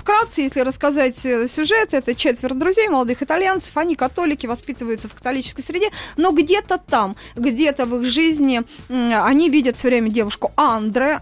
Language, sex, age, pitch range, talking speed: Russian, female, 20-39, 225-285 Hz, 150 wpm